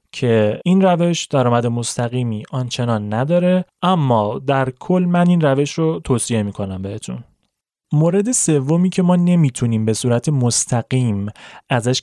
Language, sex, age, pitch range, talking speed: Persian, male, 30-49, 110-135 Hz, 135 wpm